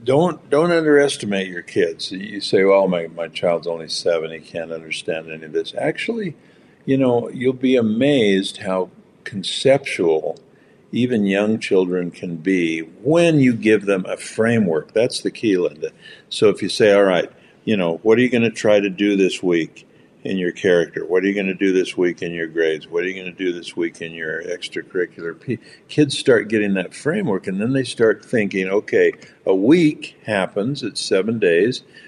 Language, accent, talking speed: English, American, 190 wpm